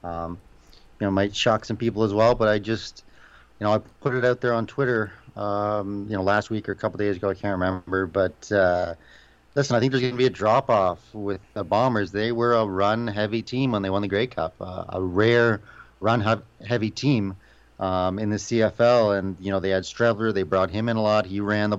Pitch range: 95-115 Hz